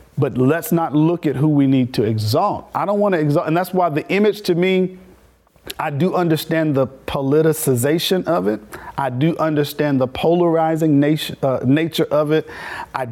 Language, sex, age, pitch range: English, male, 50-69, 135-170 Hz